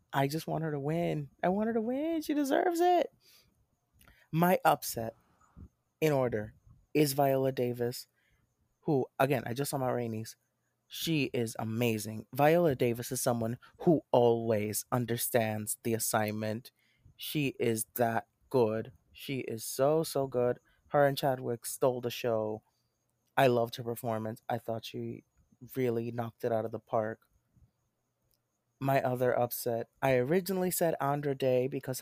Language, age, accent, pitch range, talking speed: English, 30-49, American, 115-140 Hz, 145 wpm